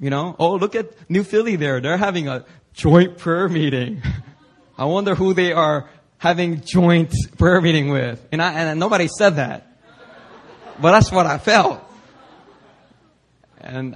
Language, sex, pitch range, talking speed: English, male, 140-215 Hz, 145 wpm